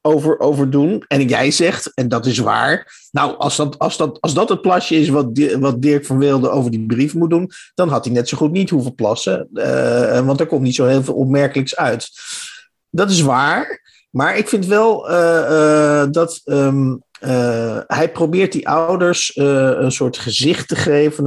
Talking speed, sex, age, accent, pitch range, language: 200 wpm, male, 50-69, Dutch, 135-180 Hz, Dutch